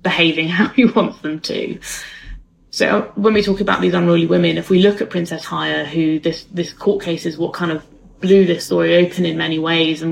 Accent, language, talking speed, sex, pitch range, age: British, English, 220 wpm, female, 160-180 Hz, 20-39